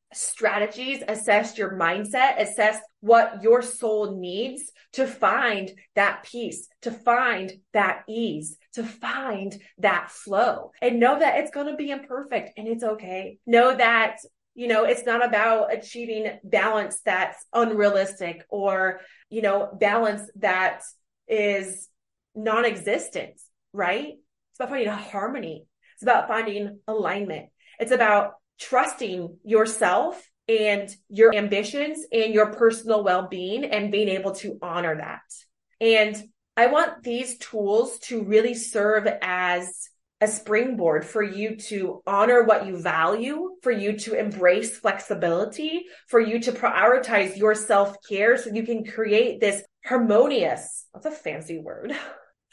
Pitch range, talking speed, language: 200-235 Hz, 130 wpm, English